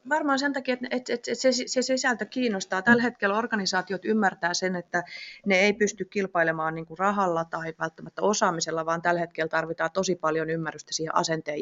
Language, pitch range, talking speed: Finnish, 160-200 Hz, 155 wpm